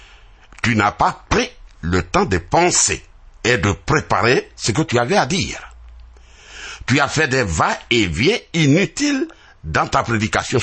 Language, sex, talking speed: French, male, 145 wpm